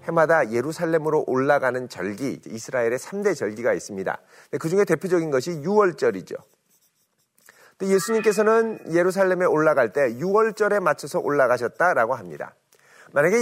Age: 40-59